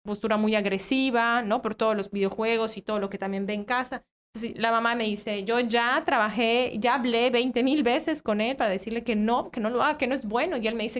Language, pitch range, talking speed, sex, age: Spanish, 215-260 Hz, 250 wpm, female, 20-39